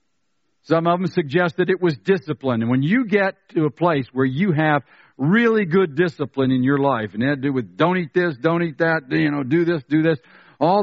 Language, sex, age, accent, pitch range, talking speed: English, male, 60-79, American, 135-185 Hz, 235 wpm